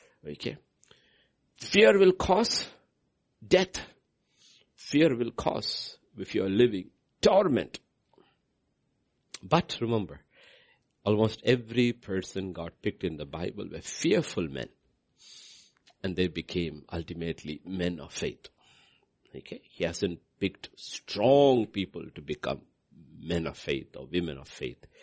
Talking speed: 115 wpm